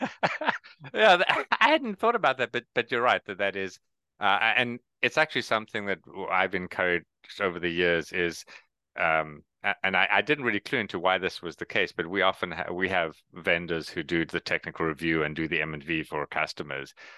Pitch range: 80-100 Hz